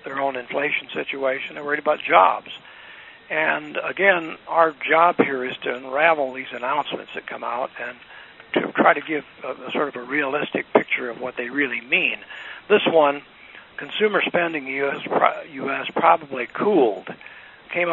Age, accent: 60-79, American